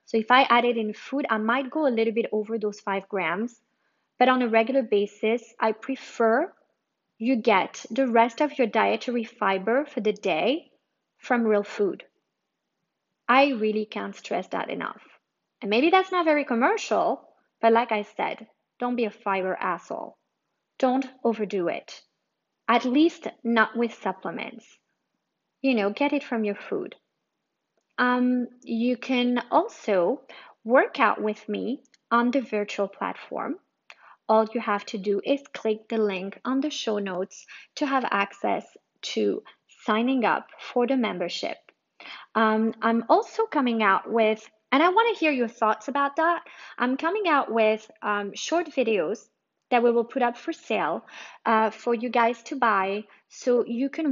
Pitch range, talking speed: 220-270 Hz, 160 wpm